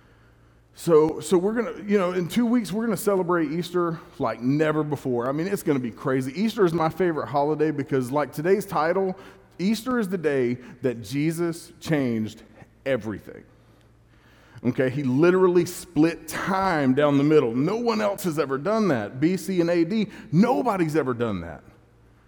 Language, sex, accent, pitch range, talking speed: English, male, American, 135-180 Hz, 170 wpm